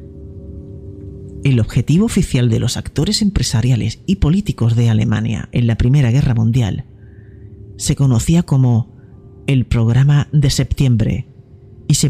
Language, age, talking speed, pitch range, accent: Spanish, 40-59, 125 wpm, 115-135 Hz, Spanish